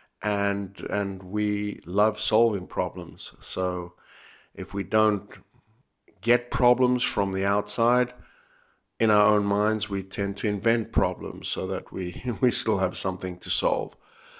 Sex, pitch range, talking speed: male, 95-110 Hz, 140 wpm